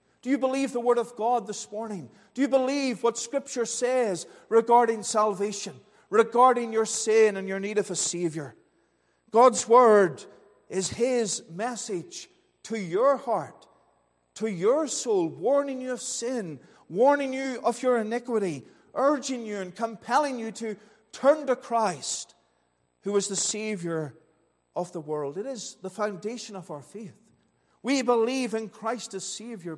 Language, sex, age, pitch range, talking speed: English, male, 50-69, 160-235 Hz, 150 wpm